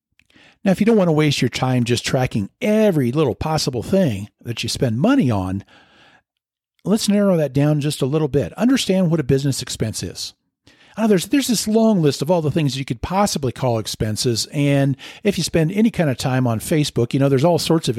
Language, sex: English, male